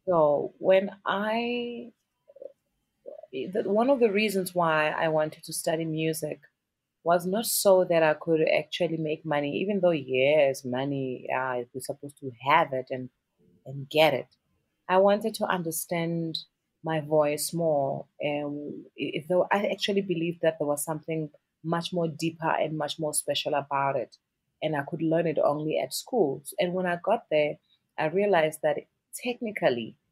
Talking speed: 155 wpm